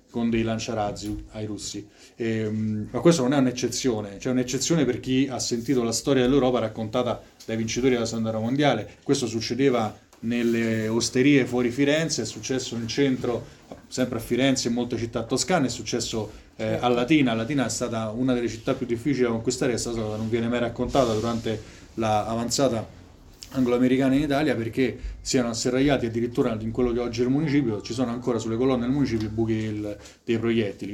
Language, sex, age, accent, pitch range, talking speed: Italian, male, 20-39, native, 110-125 Hz, 190 wpm